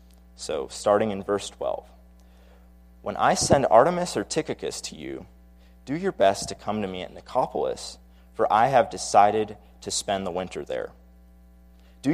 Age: 30-49